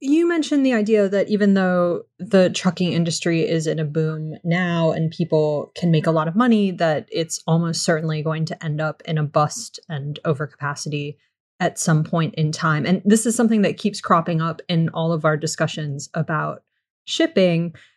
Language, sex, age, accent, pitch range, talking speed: English, female, 20-39, American, 160-205 Hz, 185 wpm